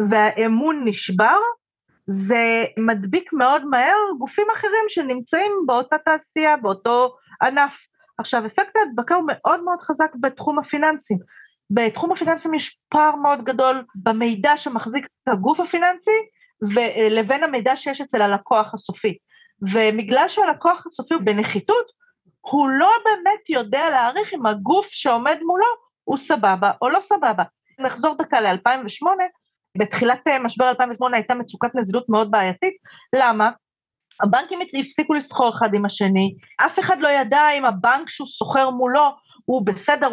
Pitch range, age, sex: 230-330 Hz, 40-59, female